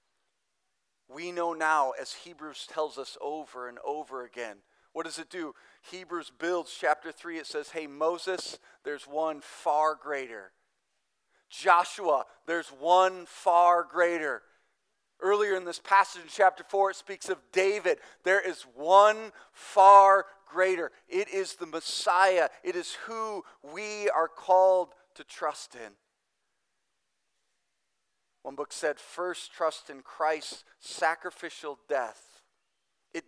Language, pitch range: English, 150-185 Hz